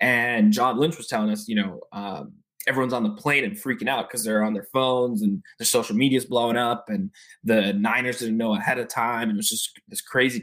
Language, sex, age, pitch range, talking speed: English, male, 20-39, 110-155 Hz, 240 wpm